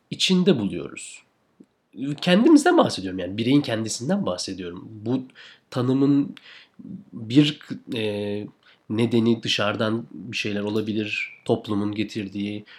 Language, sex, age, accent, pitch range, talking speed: Turkish, male, 40-59, native, 100-125 Hz, 90 wpm